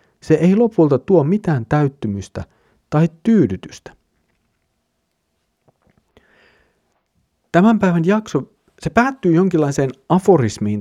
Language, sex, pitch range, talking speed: Finnish, male, 115-175 Hz, 85 wpm